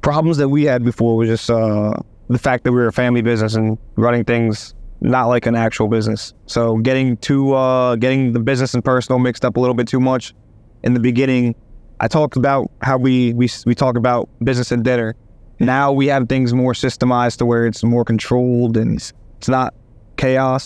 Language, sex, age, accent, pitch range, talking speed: English, male, 20-39, American, 115-130 Hz, 205 wpm